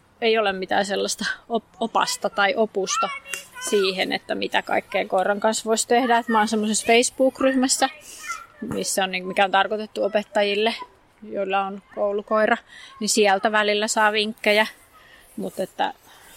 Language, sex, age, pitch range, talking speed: Finnish, female, 20-39, 200-240 Hz, 115 wpm